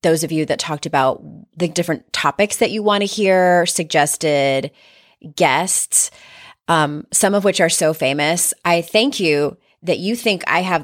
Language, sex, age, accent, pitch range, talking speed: English, female, 30-49, American, 160-230 Hz, 170 wpm